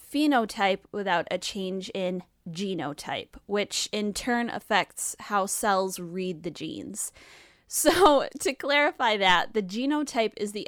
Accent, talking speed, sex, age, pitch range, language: American, 130 wpm, female, 10-29, 185-230 Hz, English